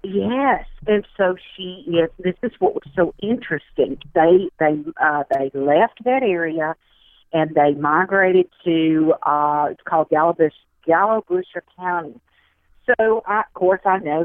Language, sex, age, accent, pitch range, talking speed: English, female, 50-69, American, 175-220 Hz, 145 wpm